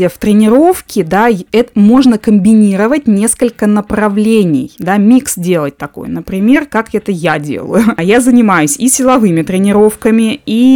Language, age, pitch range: Russian, 20-39, 180-235 Hz